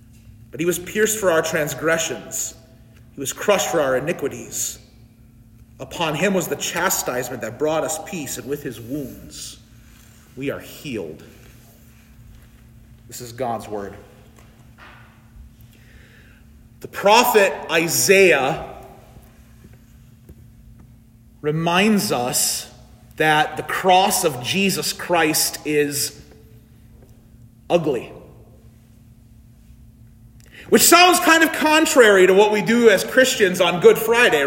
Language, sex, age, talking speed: English, male, 40-59, 105 wpm